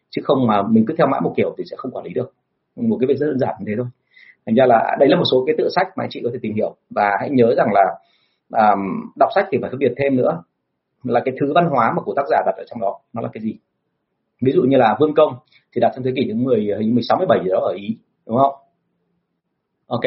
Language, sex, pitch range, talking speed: Vietnamese, male, 115-155 Hz, 280 wpm